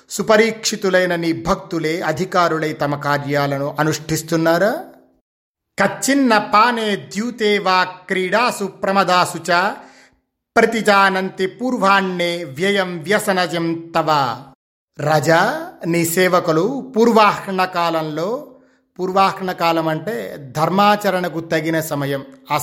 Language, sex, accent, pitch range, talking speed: Telugu, male, native, 155-195 Hz, 65 wpm